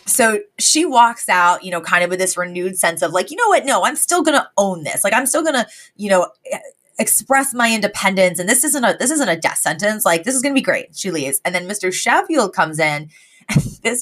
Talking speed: 245 wpm